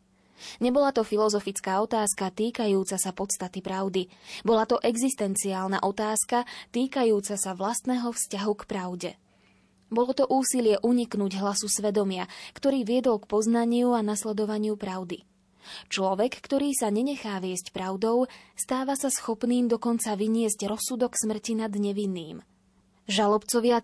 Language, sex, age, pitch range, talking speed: Slovak, female, 20-39, 195-235 Hz, 120 wpm